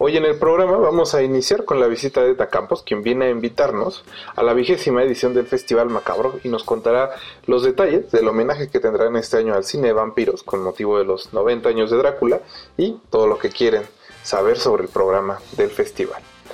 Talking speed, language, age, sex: 205 wpm, Spanish, 30-49, male